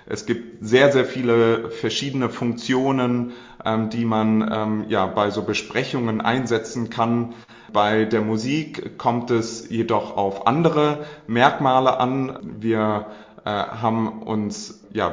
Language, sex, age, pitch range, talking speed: German, male, 30-49, 110-130 Hz, 125 wpm